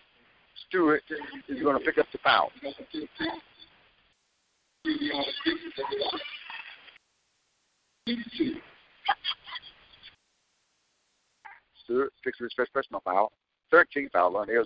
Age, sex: 60-79, male